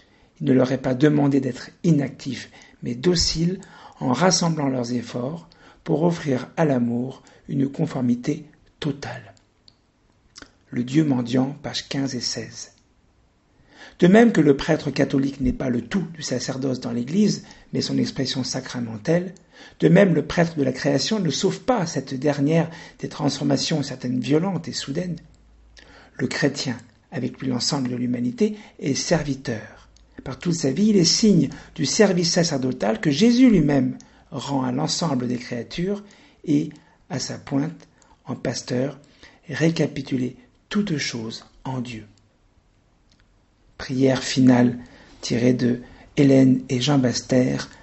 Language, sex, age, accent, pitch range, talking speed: French, male, 50-69, French, 125-160 Hz, 140 wpm